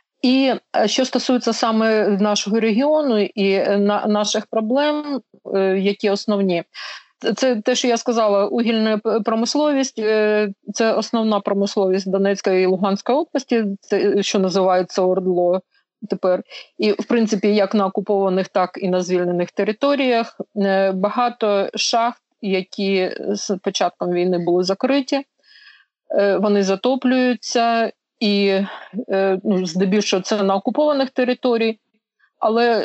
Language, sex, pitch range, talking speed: Ukrainian, female, 195-235 Hz, 105 wpm